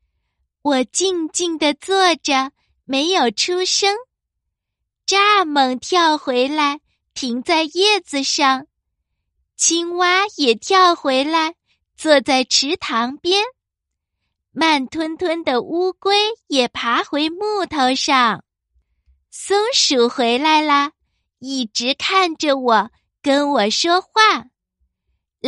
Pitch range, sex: 255-360 Hz, female